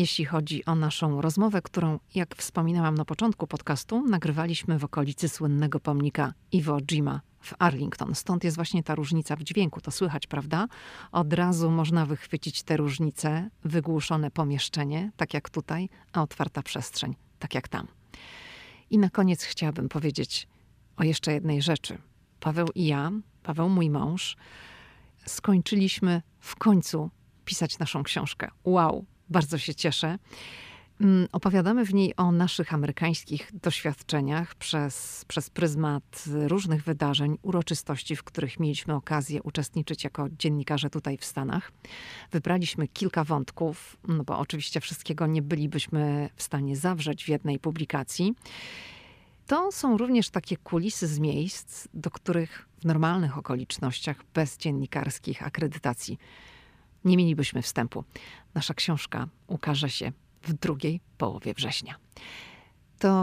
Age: 40-59